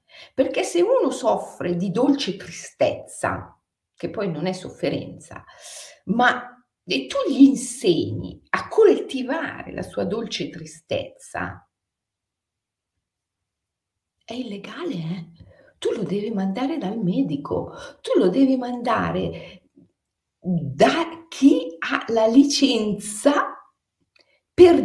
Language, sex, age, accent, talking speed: Italian, female, 50-69, native, 100 wpm